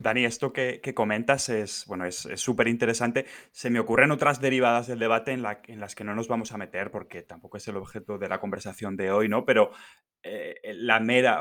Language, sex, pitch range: Spanish, male, 105-130 Hz